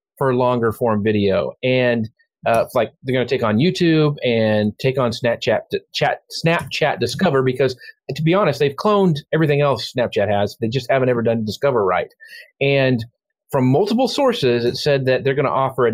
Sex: male